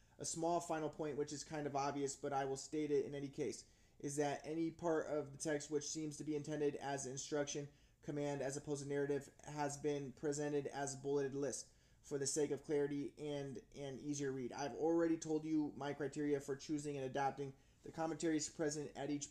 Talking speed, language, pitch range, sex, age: 210 wpm, English, 140-150 Hz, male, 20-39